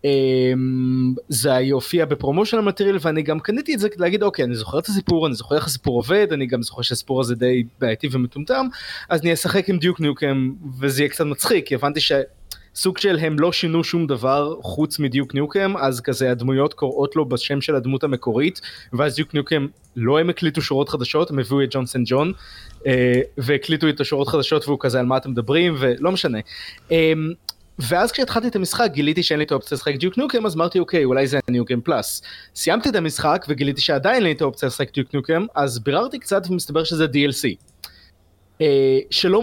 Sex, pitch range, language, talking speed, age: male, 130-170 Hz, Hebrew, 180 wpm, 20-39